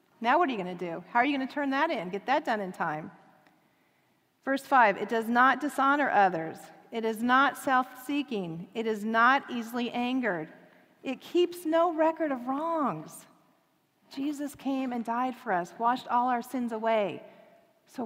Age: 40-59